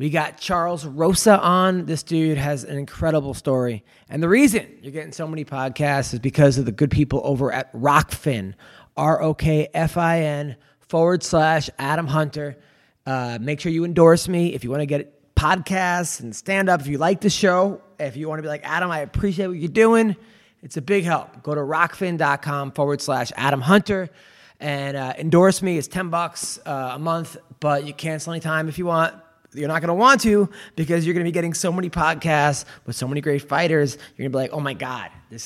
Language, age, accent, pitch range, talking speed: English, 20-39, American, 135-170 Hz, 210 wpm